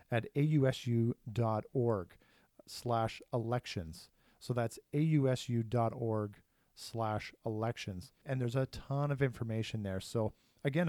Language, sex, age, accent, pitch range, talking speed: English, male, 40-59, American, 110-135 Hz, 75 wpm